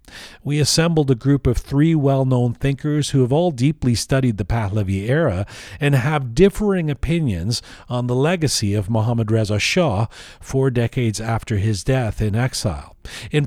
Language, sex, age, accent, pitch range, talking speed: English, male, 40-59, American, 110-135 Hz, 155 wpm